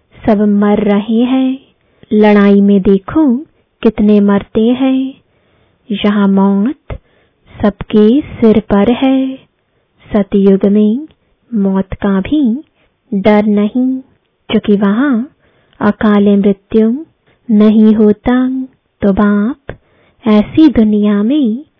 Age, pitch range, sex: 20-39, 205-255 Hz, female